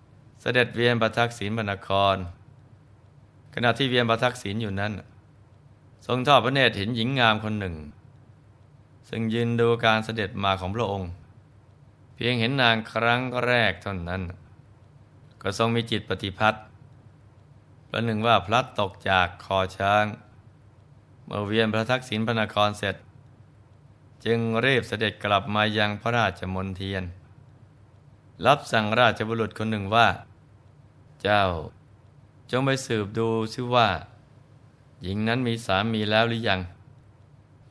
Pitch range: 105-120 Hz